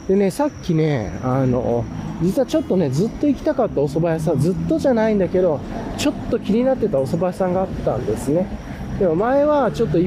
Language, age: Japanese, 20-39